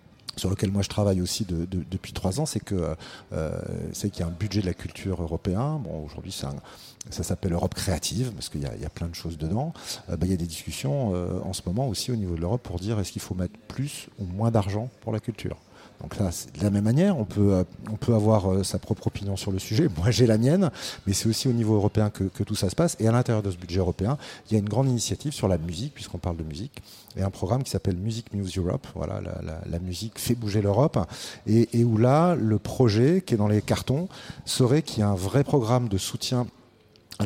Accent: French